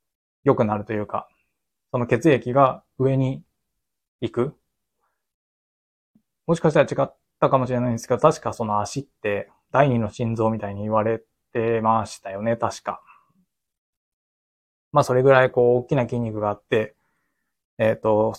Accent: native